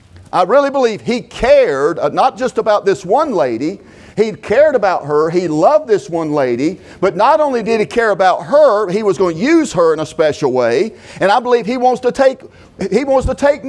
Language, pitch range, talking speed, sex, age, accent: English, 165-255 Hz, 220 wpm, male, 50-69, American